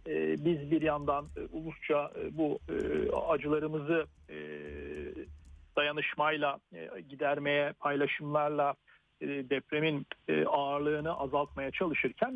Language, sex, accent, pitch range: Turkish, male, native, 140-185 Hz